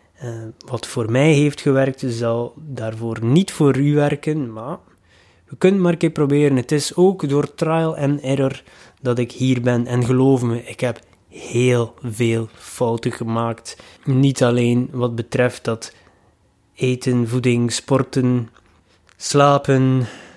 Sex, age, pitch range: male, 20-39, 120-150 Hz